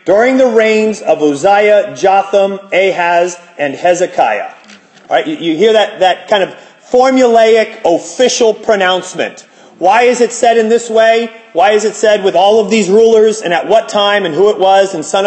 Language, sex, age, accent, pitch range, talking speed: English, male, 30-49, American, 200-275 Hz, 175 wpm